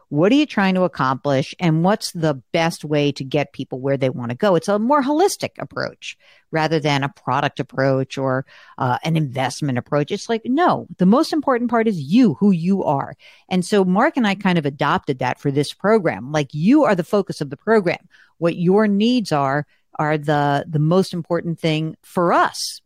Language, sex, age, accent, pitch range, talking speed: English, female, 50-69, American, 145-210 Hz, 205 wpm